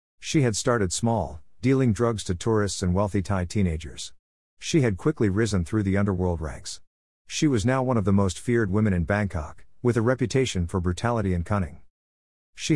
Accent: American